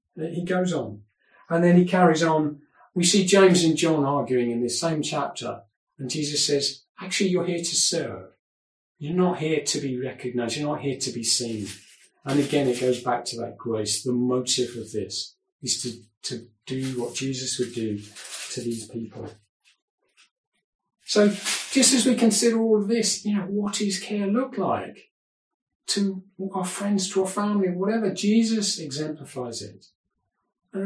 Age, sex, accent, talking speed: 40-59, male, British, 170 wpm